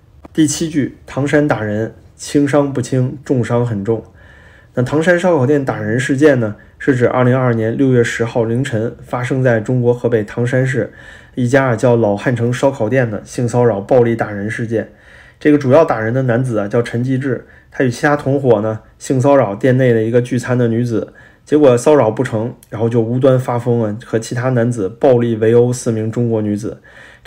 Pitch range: 110-130 Hz